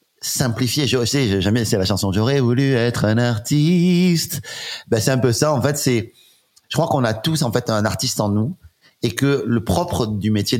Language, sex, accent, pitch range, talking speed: French, male, French, 100-125 Hz, 220 wpm